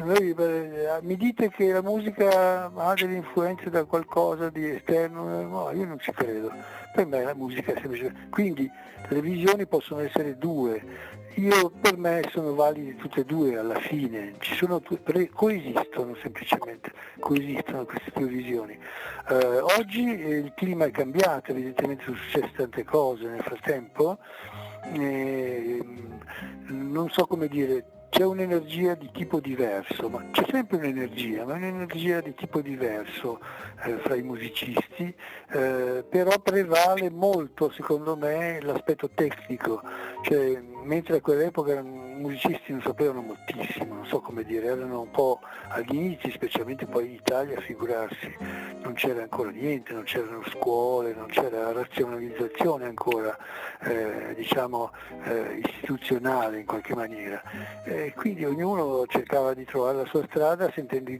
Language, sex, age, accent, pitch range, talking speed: Italian, male, 60-79, native, 125-175 Hz, 145 wpm